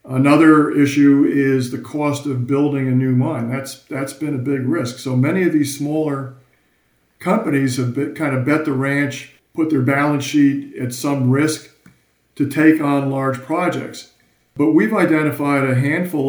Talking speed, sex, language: 165 wpm, male, English